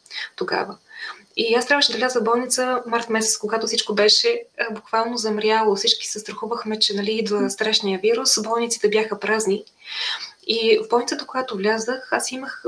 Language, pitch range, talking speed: Bulgarian, 215-240 Hz, 160 wpm